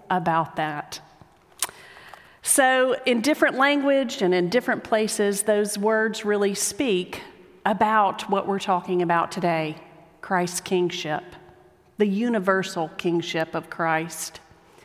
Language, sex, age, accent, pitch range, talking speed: English, female, 40-59, American, 185-240 Hz, 110 wpm